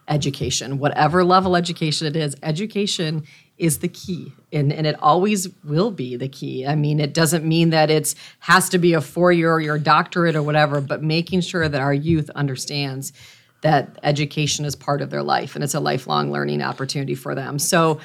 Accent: American